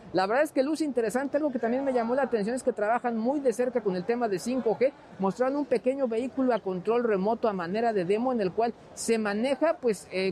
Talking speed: 245 wpm